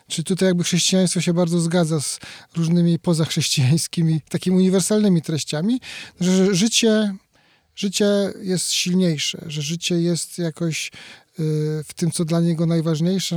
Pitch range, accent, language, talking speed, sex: 165-195 Hz, native, Polish, 135 wpm, male